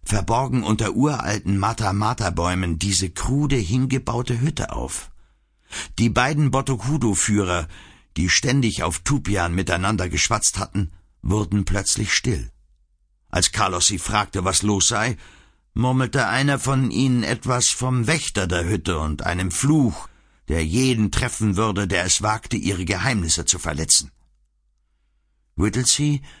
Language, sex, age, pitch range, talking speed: German, male, 60-79, 80-125 Hz, 125 wpm